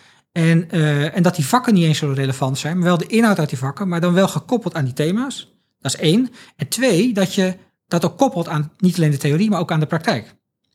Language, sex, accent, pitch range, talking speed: Dutch, male, Dutch, 145-185 Hz, 250 wpm